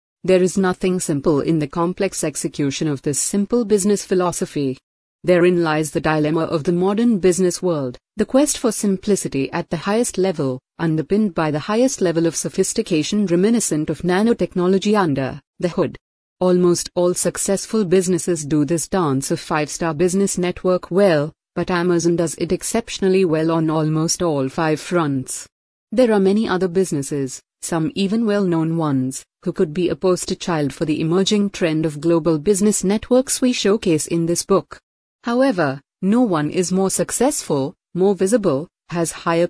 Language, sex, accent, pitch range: English, female, Indian, 155-190 Hz